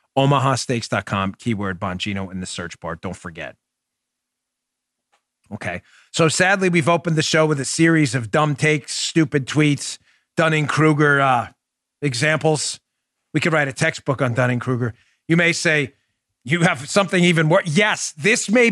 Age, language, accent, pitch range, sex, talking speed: 40-59, English, American, 145-210 Hz, male, 150 wpm